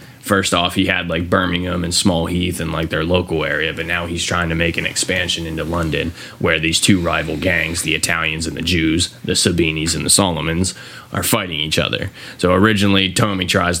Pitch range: 85-120 Hz